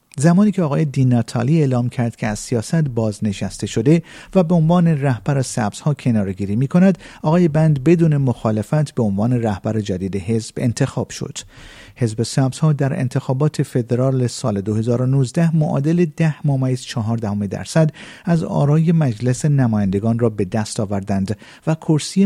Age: 50-69